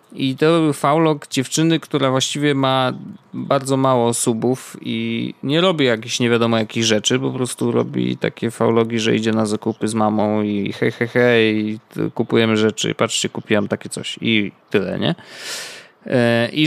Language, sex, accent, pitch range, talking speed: Polish, male, native, 115-160 Hz, 160 wpm